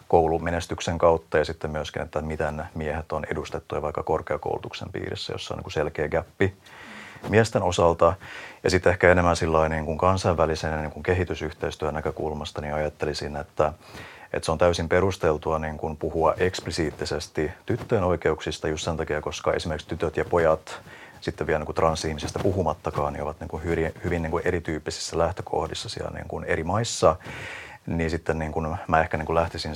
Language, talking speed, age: Finnish, 130 wpm, 30-49